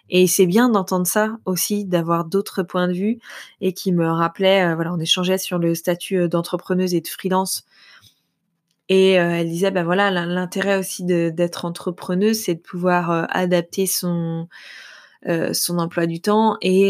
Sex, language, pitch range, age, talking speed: female, French, 170-195 Hz, 20-39, 170 wpm